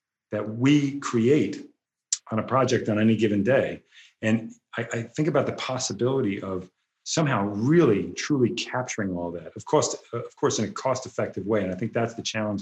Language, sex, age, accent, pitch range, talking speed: English, male, 40-59, American, 105-125 Hz, 180 wpm